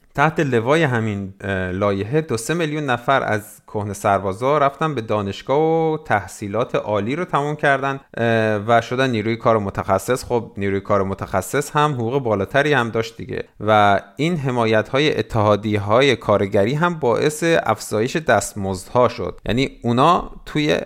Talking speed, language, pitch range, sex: 145 wpm, Persian, 105-140 Hz, male